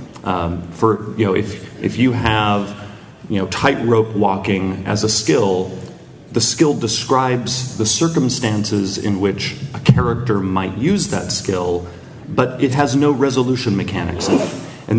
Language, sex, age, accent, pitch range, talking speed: English, male, 40-59, American, 95-125 Hz, 150 wpm